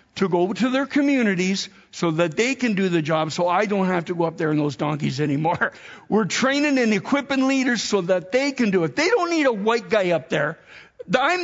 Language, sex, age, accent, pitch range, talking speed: English, male, 50-69, American, 170-230 Hz, 230 wpm